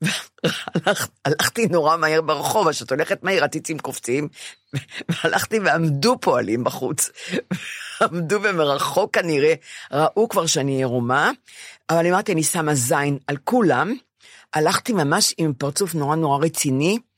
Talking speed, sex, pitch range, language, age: 125 wpm, female, 140-185 Hz, Hebrew, 50-69